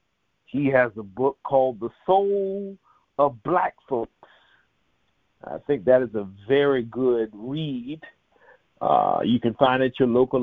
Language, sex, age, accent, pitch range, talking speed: English, male, 50-69, American, 115-140 Hz, 150 wpm